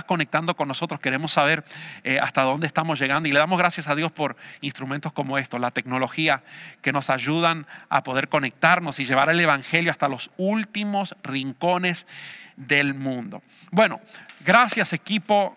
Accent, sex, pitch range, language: Mexican, male, 150-190 Hz, English